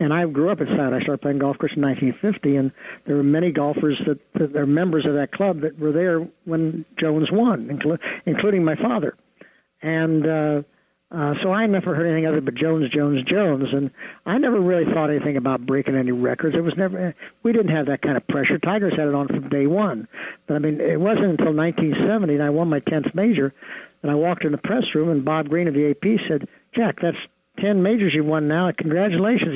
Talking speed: 220 wpm